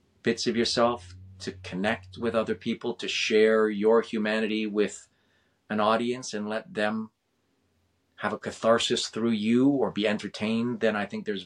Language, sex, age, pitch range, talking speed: English, male, 30-49, 100-115 Hz, 155 wpm